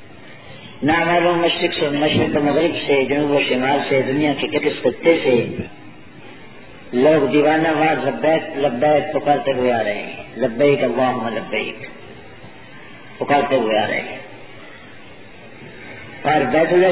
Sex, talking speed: female, 80 wpm